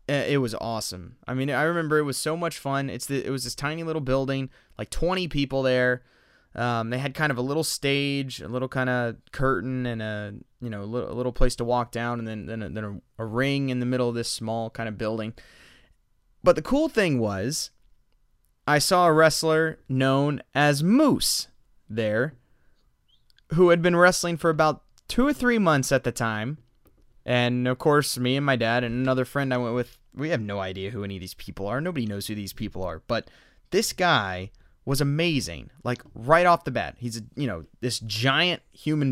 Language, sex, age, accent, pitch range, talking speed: English, male, 20-39, American, 120-160 Hz, 210 wpm